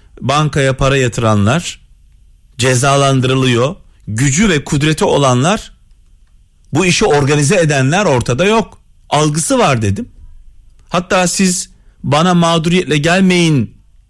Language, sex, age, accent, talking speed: Turkish, male, 40-59, native, 95 wpm